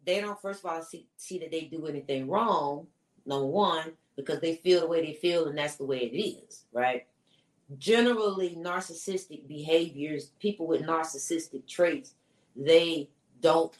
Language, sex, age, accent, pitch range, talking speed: English, female, 30-49, American, 155-205 Hz, 160 wpm